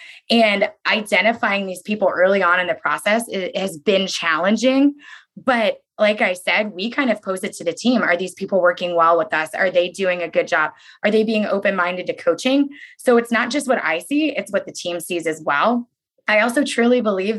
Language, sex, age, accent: English, female, 20-39, American